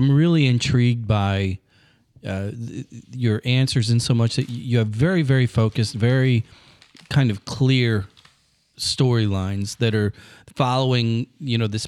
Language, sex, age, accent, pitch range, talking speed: English, male, 40-59, American, 110-125 Hz, 135 wpm